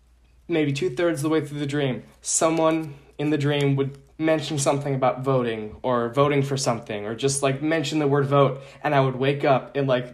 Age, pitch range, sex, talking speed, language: 20-39, 125-150 Hz, male, 205 wpm, English